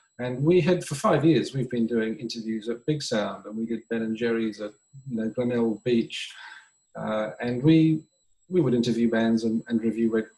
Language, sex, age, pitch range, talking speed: English, male, 40-59, 115-135 Hz, 200 wpm